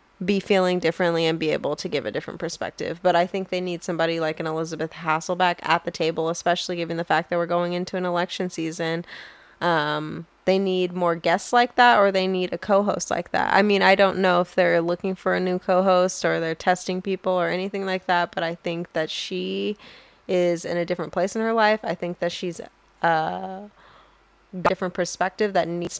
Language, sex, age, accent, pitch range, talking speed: English, female, 10-29, American, 170-200 Hz, 210 wpm